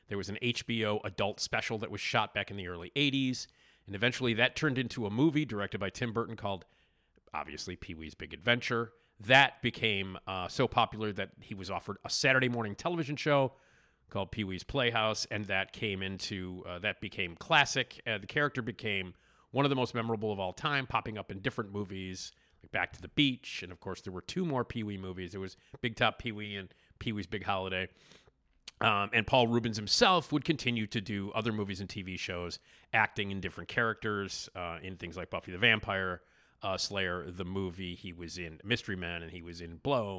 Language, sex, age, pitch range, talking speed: English, male, 40-59, 95-120 Hz, 200 wpm